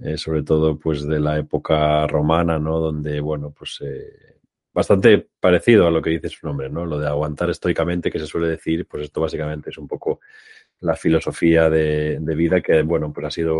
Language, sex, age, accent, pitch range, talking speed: Spanish, male, 30-49, Spanish, 75-90 Hz, 205 wpm